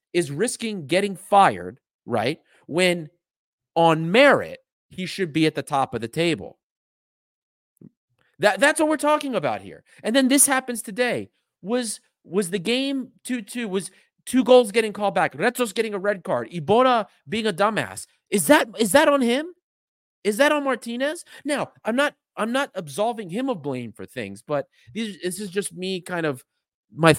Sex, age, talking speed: male, 30-49, 175 wpm